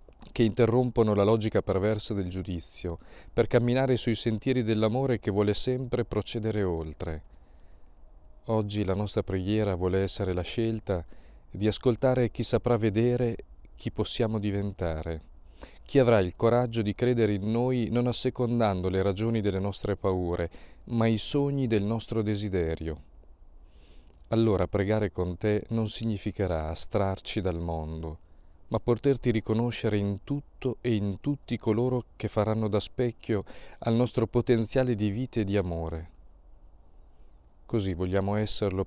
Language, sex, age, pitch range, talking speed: Italian, male, 40-59, 85-115 Hz, 135 wpm